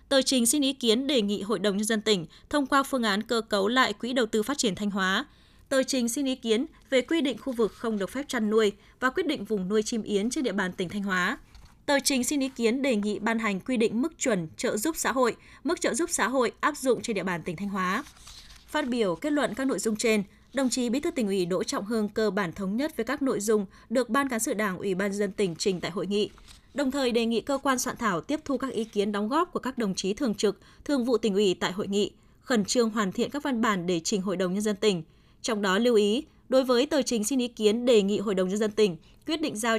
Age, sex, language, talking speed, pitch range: 20-39, female, Vietnamese, 280 wpm, 205-260 Hz